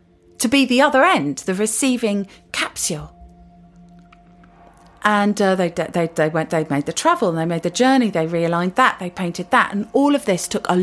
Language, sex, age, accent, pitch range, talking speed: English, female, 40-59, British, 160-210 Hz, 195 wpm